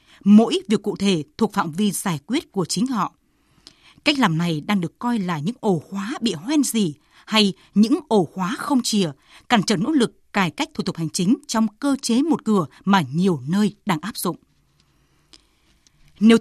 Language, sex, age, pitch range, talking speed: Vietnamese, female, 20-39, 185-250 Hz, 195 wpm